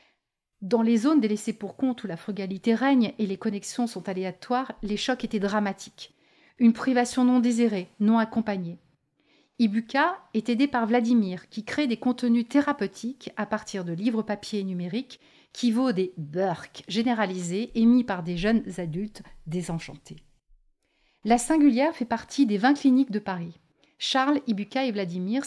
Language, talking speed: French, 160 wpm